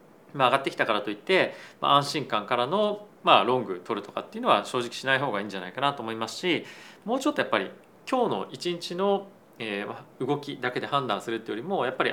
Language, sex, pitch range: Japanese, male, 115-175 Hz